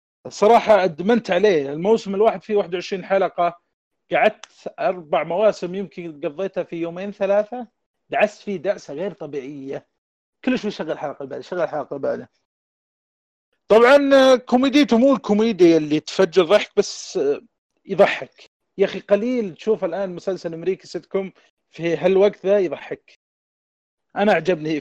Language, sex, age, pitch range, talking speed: Arabic, male, 40-59, 150-200 Hz, 125 wpm